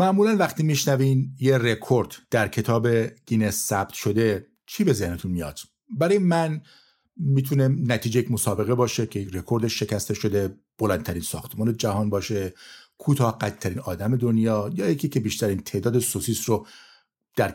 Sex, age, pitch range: male, 50-69, 105-140 Hz